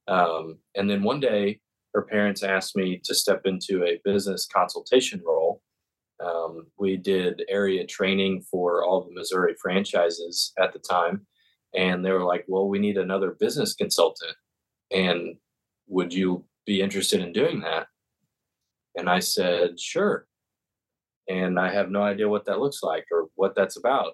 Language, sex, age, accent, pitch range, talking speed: English, male, 20-39, American, 90-105 Hz, 160 wpm